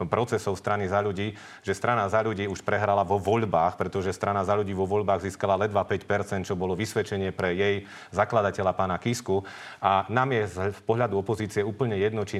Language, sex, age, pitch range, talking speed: Slovak, male, 40-59, 100-115 Hz, 180 wpm